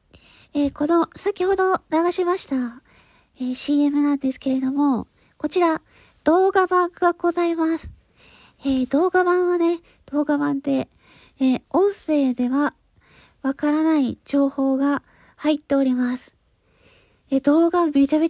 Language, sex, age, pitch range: Japanese, female, 40-59, 270-335 Hz